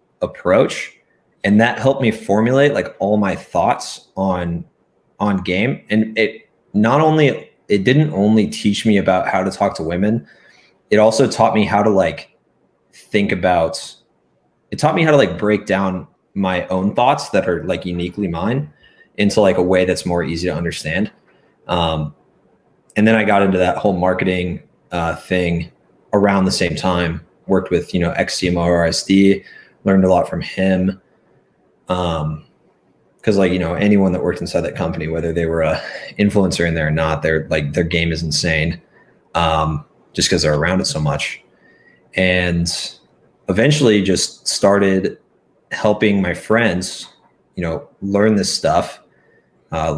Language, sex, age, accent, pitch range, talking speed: English, male, 20-39, American, 85-105 Hz, 160 wpm